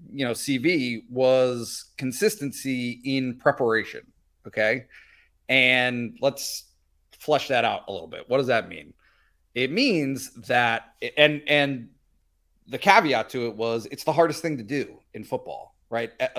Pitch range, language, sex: 120-155 Hz, English, male